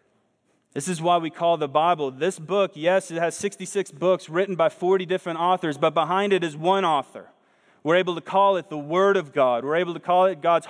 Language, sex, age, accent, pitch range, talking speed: English, male, 30-49, American, 160-190 Hz, 225 wpm